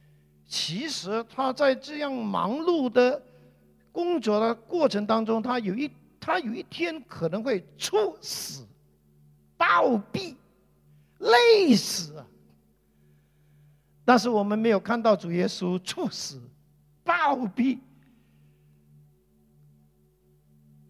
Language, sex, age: Chinese, male, 50-69